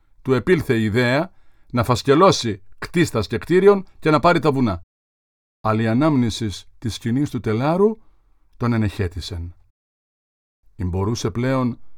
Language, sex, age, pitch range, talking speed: Greek, male, 50-69, 105-150 Hz, 130 wpm